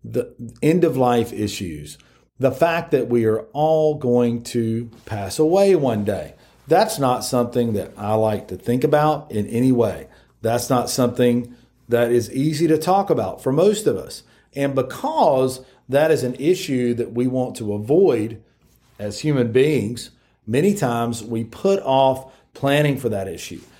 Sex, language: male, English